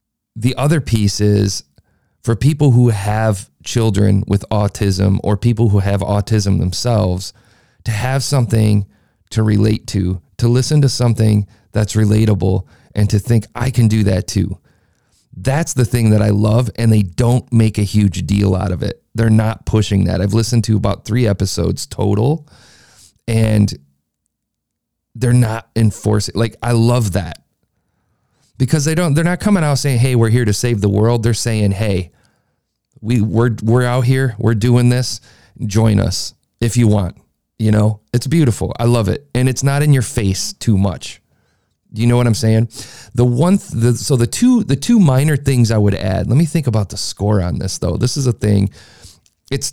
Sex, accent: male, American